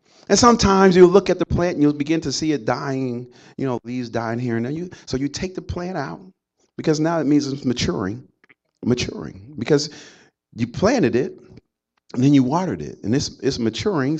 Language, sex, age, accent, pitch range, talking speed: English, male, 40-59, American, 135-195 Hz, 205 wpm